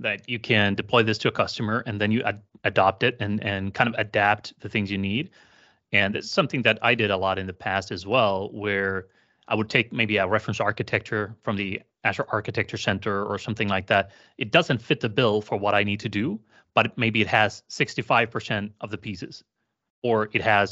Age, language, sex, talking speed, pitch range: 30-49, English, male, 215 wpm, 100-115 Hz